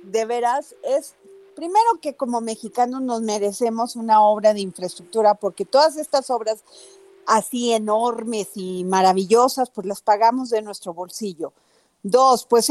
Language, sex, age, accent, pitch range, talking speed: Spanish, female, 40-59, Mexican, 205-255 Hz, 135 wpm